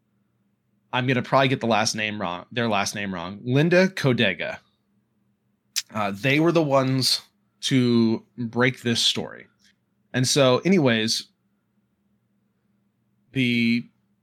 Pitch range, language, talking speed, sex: 115-135 Hz, English, 115 wpm, male